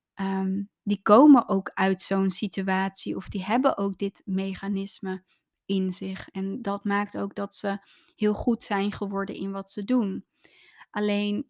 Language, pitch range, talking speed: Dutch, 195-215 Hz, 155 wpm